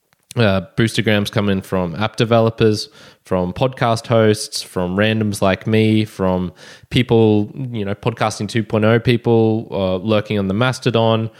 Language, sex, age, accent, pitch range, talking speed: English, male, 20-39, Australian, 95-115 Hz, 135 wpm